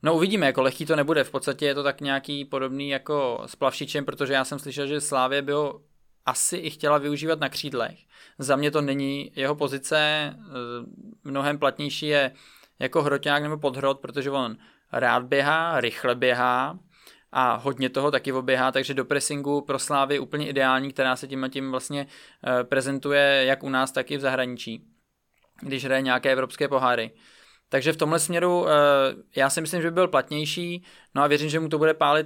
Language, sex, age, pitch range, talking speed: Czech, male, 20-39, 135-150 Hz, 180 wpm